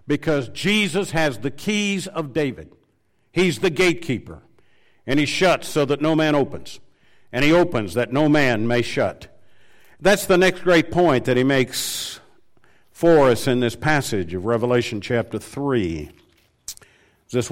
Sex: male